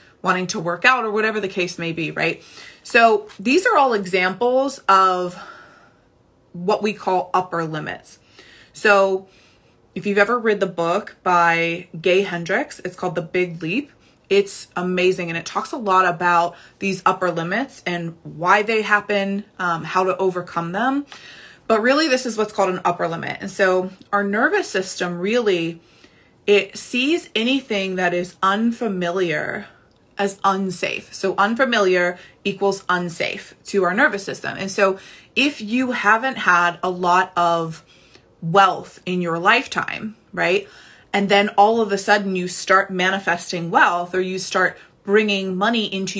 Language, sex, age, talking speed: English, female, 20-39, 155 wpm